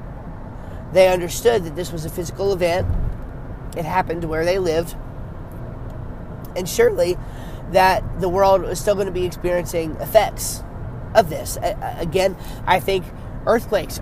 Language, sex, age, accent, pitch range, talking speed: English, male, 30-49, American, 120-175 Hz, 135 wpm